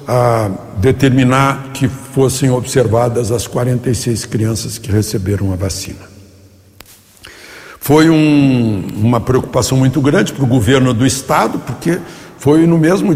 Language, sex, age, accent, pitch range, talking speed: Portuguese, male, 60-79, Brazilian, 115-145 Hz, 120 wpm